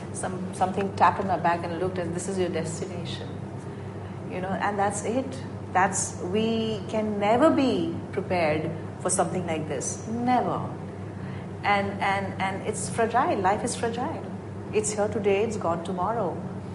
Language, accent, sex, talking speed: English, Indian, female, 155 wpm